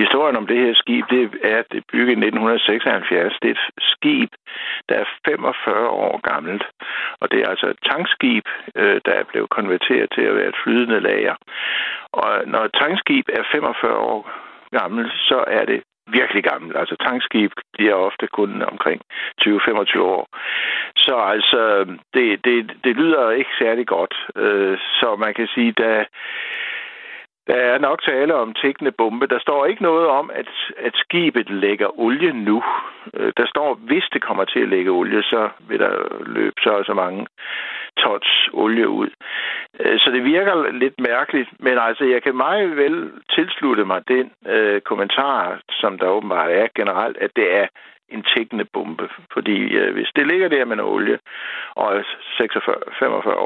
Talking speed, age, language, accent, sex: 165 wpm, 60-79, Danish, native, male